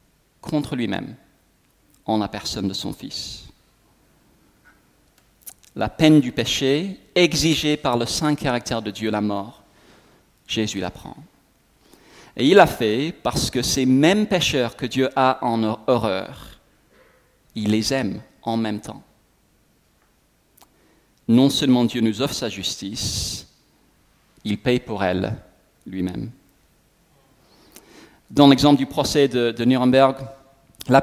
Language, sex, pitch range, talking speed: French, male, 115-155 Hz, 125 wpm